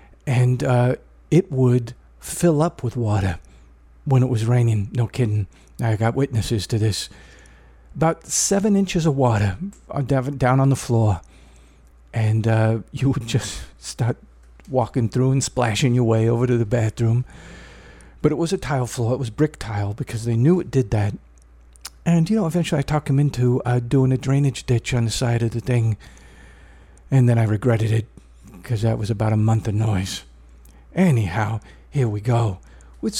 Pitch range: 100-135 Hz